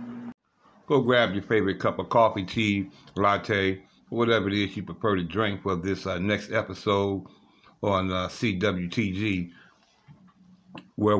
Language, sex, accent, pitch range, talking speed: English, male, American, 95-115 Hz, 135 wpm